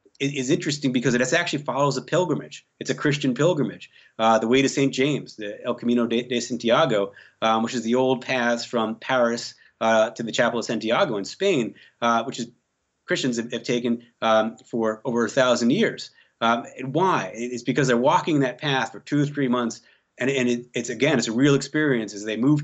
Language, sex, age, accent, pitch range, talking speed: English, male, 30-49, American, 115-140 Hz, 210 wpm